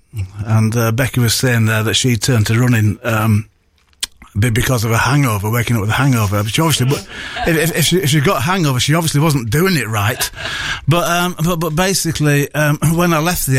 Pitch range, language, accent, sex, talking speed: 110-145 Hz, English, British, male, 210 wpm